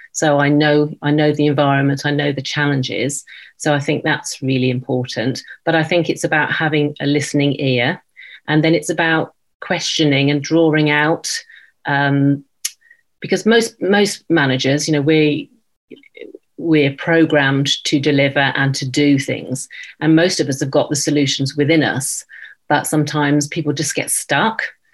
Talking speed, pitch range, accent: 160 wpm, 140-160 Hz, British